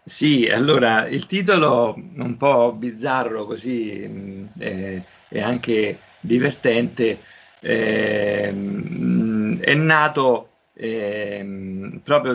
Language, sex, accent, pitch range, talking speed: Italian, male, native, 105-125 Hz, 75 wpm